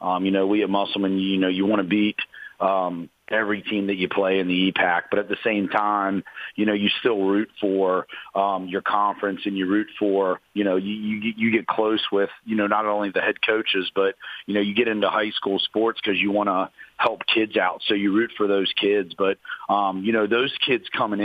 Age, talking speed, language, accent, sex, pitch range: 40-59, 235 wpm, English, American, male, 100-110 Hz